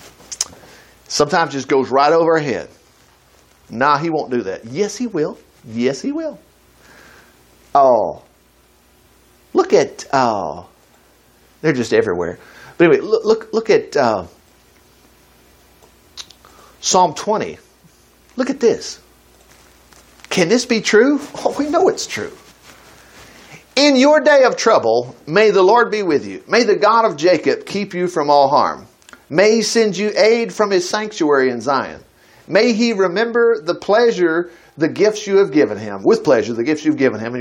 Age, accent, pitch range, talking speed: 50-69, American, 160-255 Hz, 155 wpm